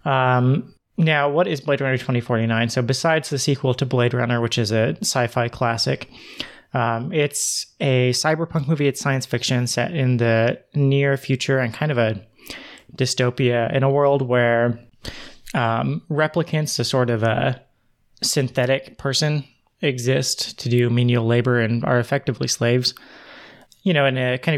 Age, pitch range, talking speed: 30-49, 120-145 Hz, 150 wpm